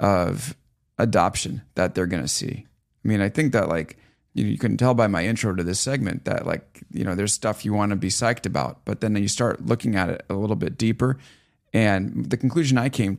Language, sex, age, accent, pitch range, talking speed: English, male, 30-49, American, 100-120 Hz, 230 wpm